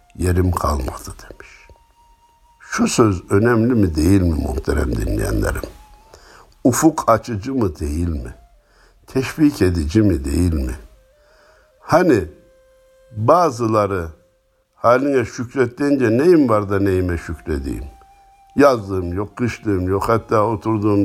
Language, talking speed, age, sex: Turkish, 105 wpm, 60-79, male